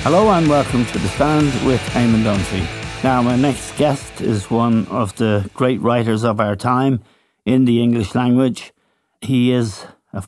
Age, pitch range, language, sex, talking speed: 60-79, 105-125 Hz, English, male, 170 wpm